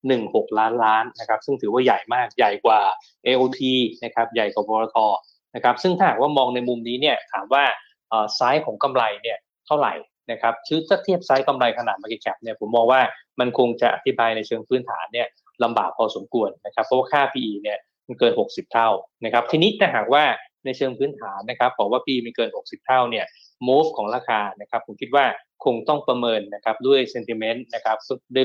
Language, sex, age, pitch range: Thai, male, 20-39, 115-135 Hz